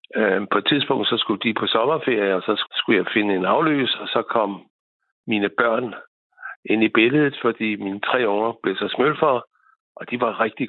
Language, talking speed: Danish, 190 wpm